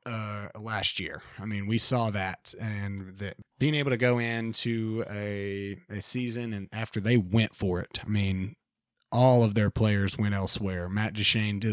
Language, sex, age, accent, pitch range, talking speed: English, male, 30-49, American, 100-120 Hz, 180 wpm